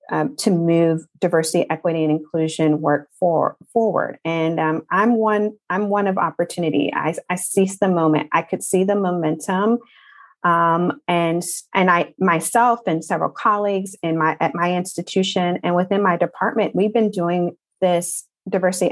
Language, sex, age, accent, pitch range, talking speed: English, female, 30-49, American, 165-190 Hz, 160 wpm